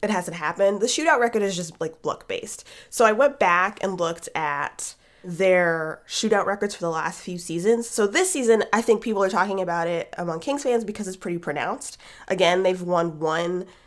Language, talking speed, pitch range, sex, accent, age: English, 205 wpm, 170-215 Hz, female, American, 20-39